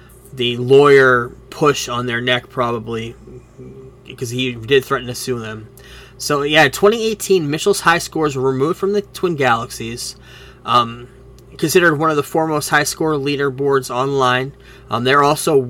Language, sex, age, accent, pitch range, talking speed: English, male, 20-39, American, 125-140 Hz, 150 wpm